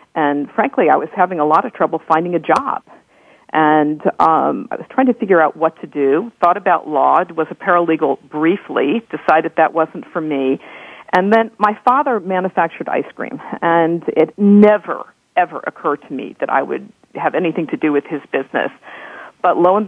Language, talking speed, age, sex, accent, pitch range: English, 185 wpm, 50-69, female, American, 155-195 Hz